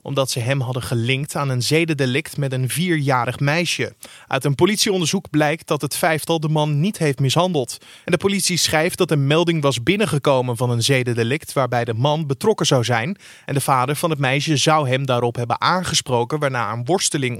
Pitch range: 130-165 Hz